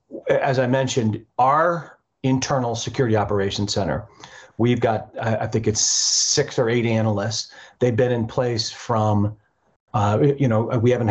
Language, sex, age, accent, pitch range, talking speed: English, male, 40-59, American, 110-130 Hz, 150 wpm